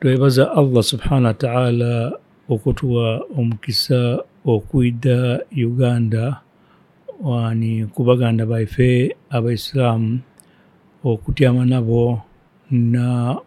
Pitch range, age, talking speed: 120-135 Hz, 60-79, 75 wpm